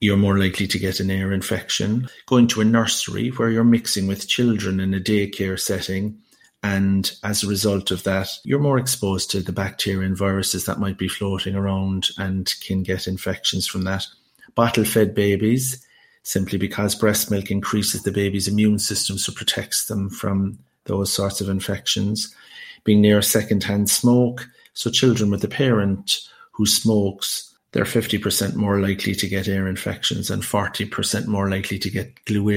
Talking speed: 170 wpm